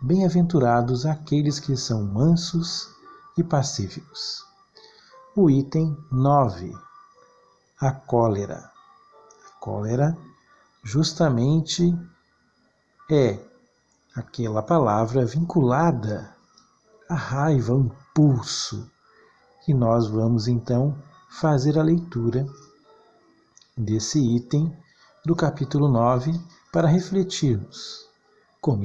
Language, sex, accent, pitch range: Portuguese, male, Brazilian, 120-170 Hz